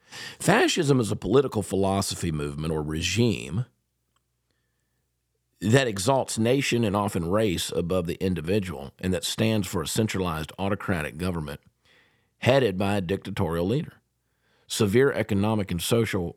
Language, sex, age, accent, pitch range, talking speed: English, male, 50-69, American, 90-135 Hz, 125 wpm